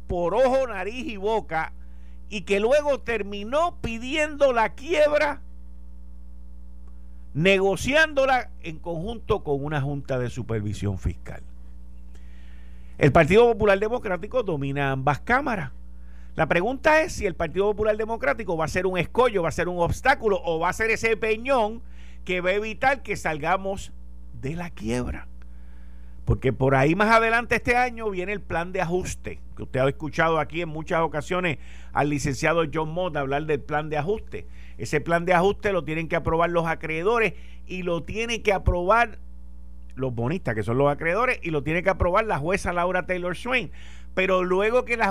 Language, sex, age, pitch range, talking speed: Spanish, male, 50-69, 130-210 Hz, 165 wpm